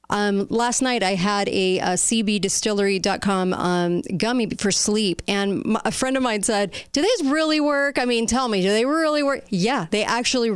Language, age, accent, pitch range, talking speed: English, 40-59, American, 185-215 Hz, 195 wpm